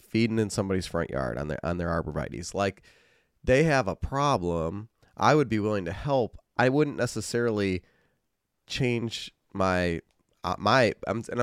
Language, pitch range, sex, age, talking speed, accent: English, 90-115 Hz, male, 30-49, 150 wpm, American